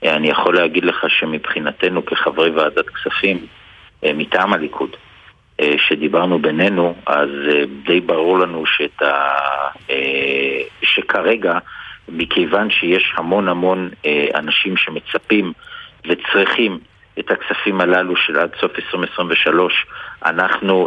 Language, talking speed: Hebrew, 95 wpm